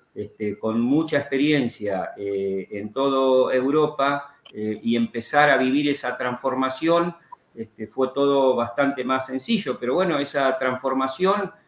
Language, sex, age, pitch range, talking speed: Spanish, male, 50-69, 120-155 Hz, 120 wpm